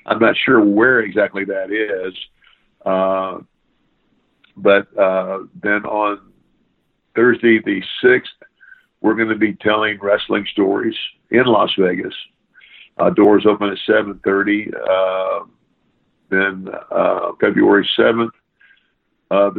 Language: English